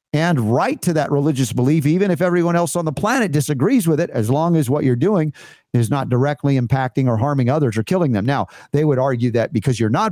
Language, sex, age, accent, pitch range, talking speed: English, male, 50-69, American, 135-175 Hz, 235 wpm